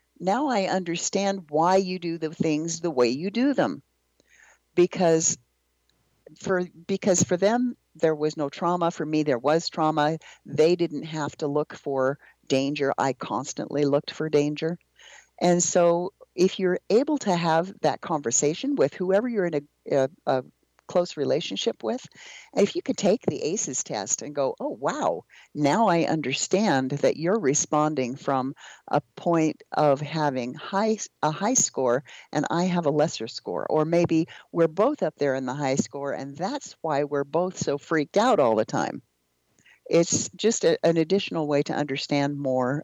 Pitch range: 140-185 Hz